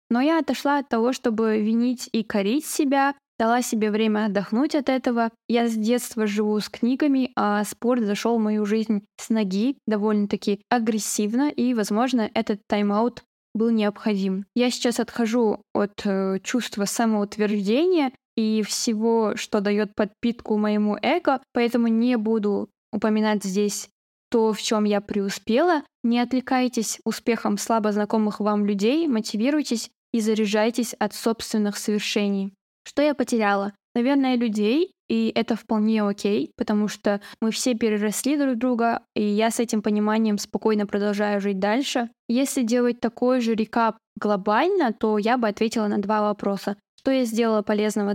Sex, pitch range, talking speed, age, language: female, 210-245 Hz, 145 wpm, 10-29, Russian